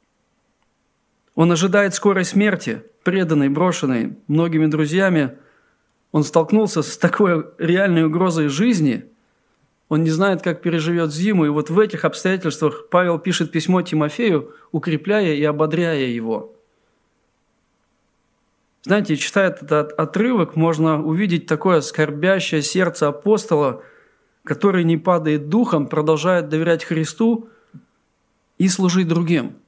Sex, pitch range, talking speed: male, 155-195 Hz, 110 wpm